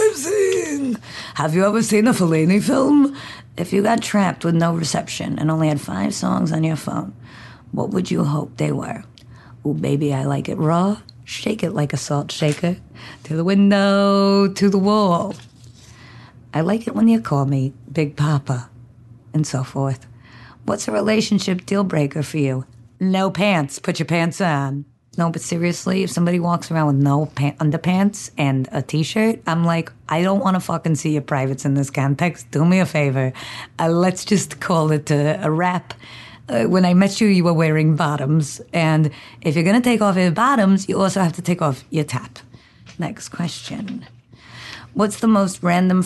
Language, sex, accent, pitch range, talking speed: English, female, American, 135-190 Hz, 180 wpm